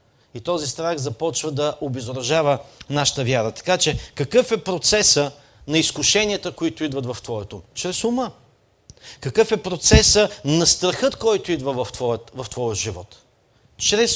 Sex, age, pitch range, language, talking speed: male, 40-59, 145-215 Hz, Bulgarian, 140 wpm